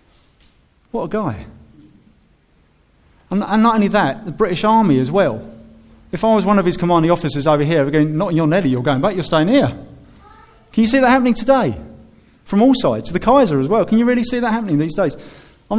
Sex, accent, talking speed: male, British, 215 wpm